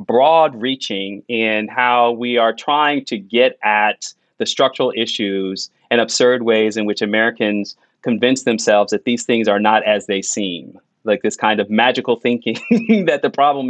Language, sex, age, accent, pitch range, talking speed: English, male, 30-49, American, 110-135 Hz, 165 wpm